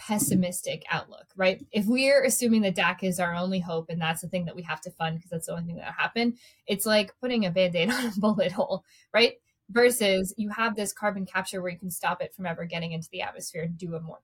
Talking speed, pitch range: 250 wpm, 170-210 Hz